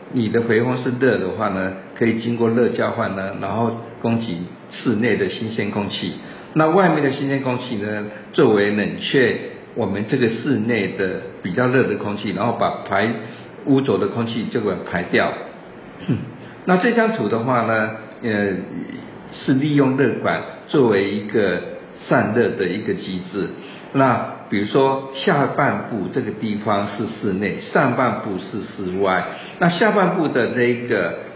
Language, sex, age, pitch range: Chinese, male, 50-69, 105-140 Hz